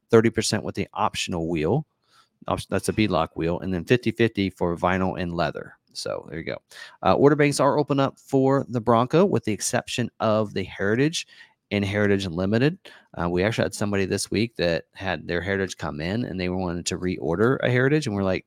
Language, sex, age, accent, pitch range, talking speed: English, male, 30-49, American, 95-120 Hz, 190 wpm